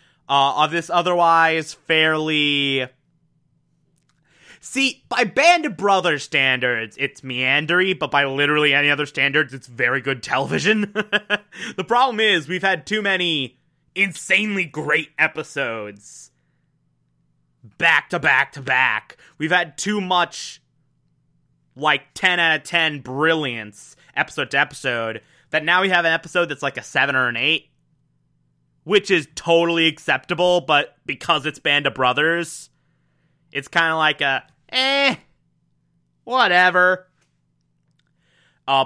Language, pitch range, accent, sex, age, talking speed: English, 135-180 Hz, American, male, 20-39, 125 wpm